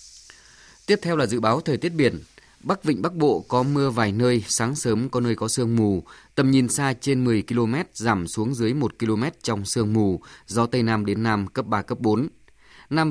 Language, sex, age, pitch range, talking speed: Vietnamese, male, 20-39, 110-135 Hz, 215 wpm